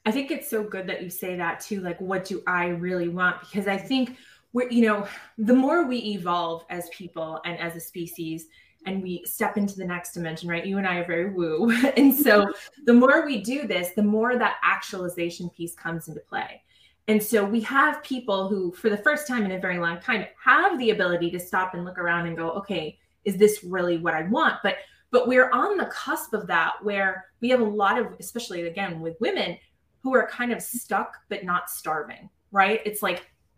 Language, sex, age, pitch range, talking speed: English, female, 20-39, 180-245 Hz, 220 wpm